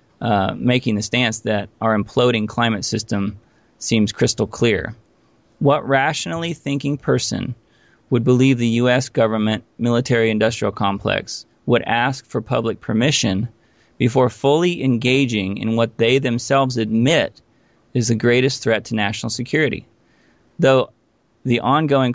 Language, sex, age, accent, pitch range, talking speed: English, male, 30-49, American, 110-130 Hz, 125 wpm